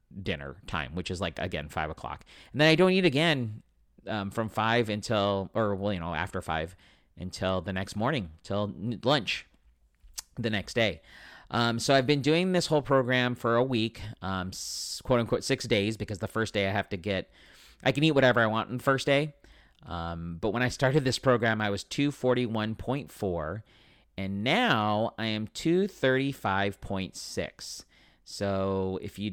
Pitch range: 95-125 Hz